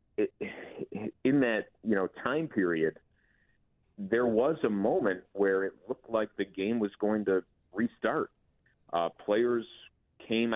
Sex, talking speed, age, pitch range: male, 135 wpm, 30-49, 85-100 Hz